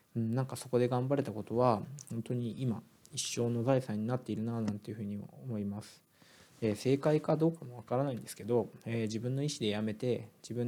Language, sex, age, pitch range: Japanese, male, 20-39, 110-130 Hz